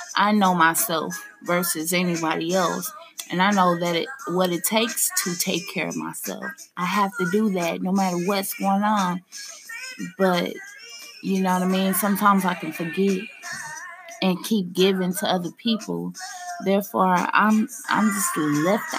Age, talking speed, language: 20-39, 160 wpm, English